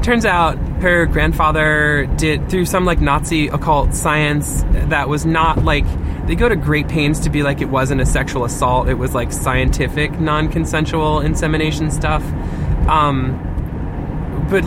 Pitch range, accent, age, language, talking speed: 130-155 Hz, American, 20-39, English, 150 wpm